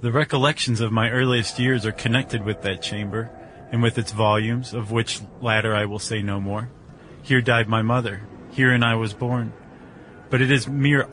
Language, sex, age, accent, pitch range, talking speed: English, male, 30-49, American, 110-125 Hz, 190 wpm